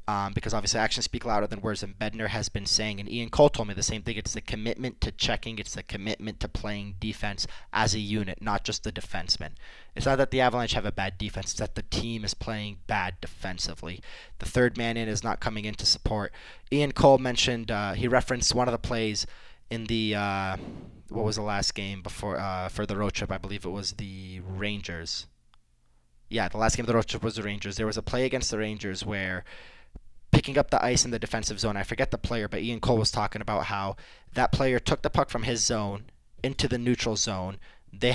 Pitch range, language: 105-120 Hz, English